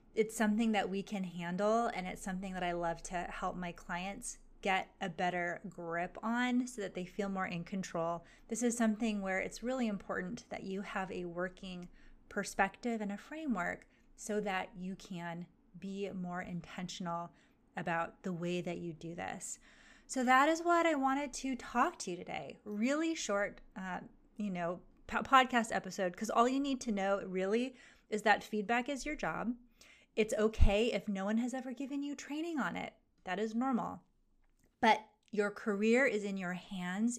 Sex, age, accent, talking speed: female, 30-49, American, 180 wpm